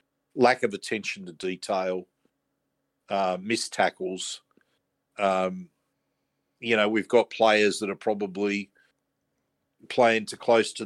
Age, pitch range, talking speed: 50-69, 90-110 Hz, 115 wpm